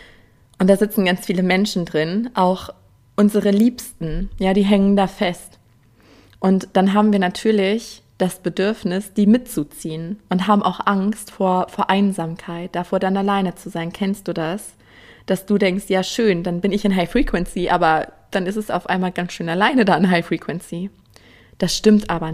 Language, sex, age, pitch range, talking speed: German, female, 20-39, 160-200 Hz, 175 wpm